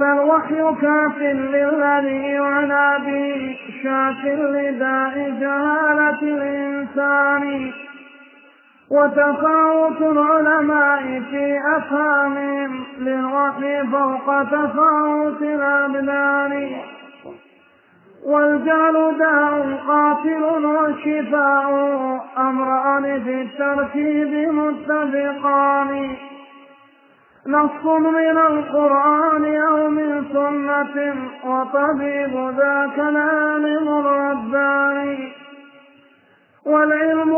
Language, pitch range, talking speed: Arabic, 280-300 Hz, 65 wpm